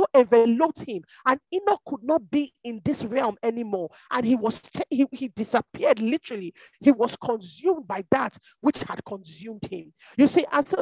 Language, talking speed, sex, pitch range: English, 170 wpm, male, 230-345 Hz